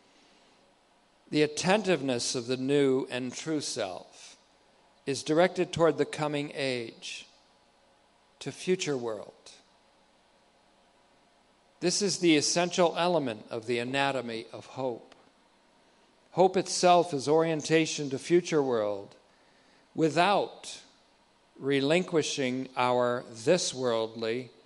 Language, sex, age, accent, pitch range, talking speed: English, male, 50-69, American, 125-155 Hz, 90 wpm